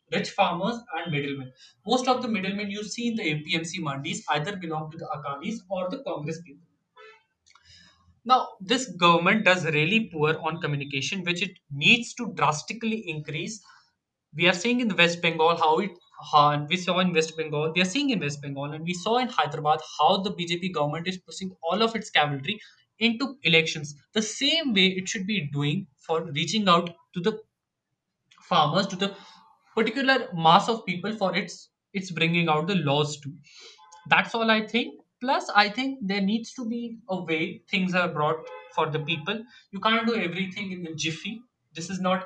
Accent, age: Indian, 20-39